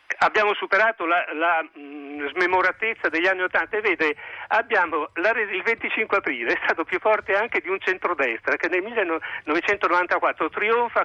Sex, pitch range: male, 150-195 Hz